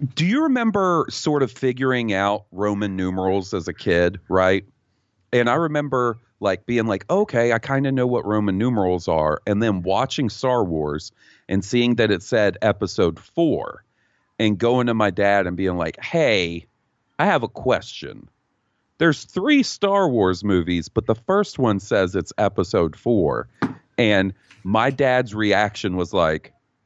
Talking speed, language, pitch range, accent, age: 160 wpm, English, 95-125 Hz, American, 40-59